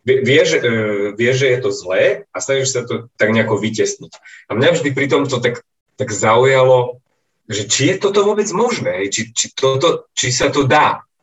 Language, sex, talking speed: Slovak, male, 180 wpm